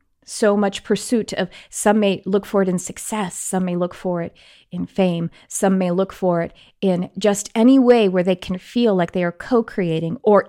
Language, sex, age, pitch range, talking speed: English, female, 30-49, 175-215 Hz, 205 wpm